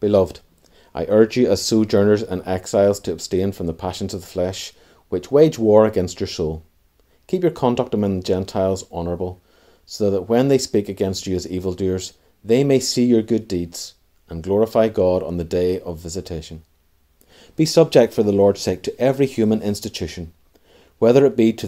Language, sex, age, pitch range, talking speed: English, male, 30-49, 90-110 Hz, 185 wpm